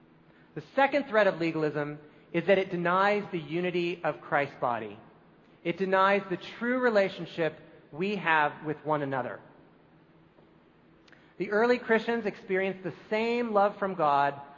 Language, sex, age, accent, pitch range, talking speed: English, male, 40-59, American, 150-190 Hz, 135 wpm